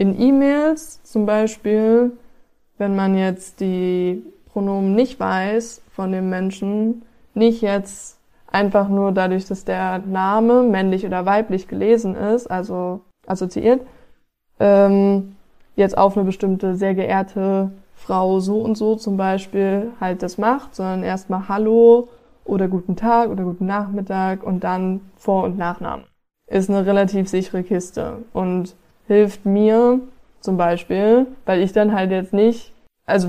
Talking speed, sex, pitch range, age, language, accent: 135 wpm, female, 185-215 Hz, 20-39, German, German